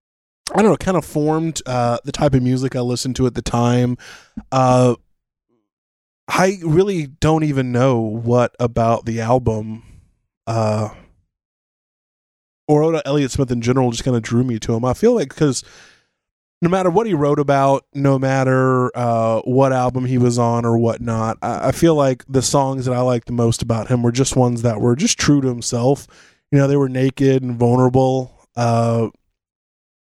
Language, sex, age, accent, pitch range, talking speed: English, male, 20-39, American, 115-135 Hz, 185 wpm